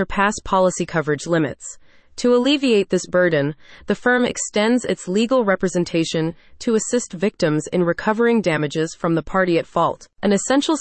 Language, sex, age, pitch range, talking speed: English, female, 30-49, 170-225 Hz, 145 wpm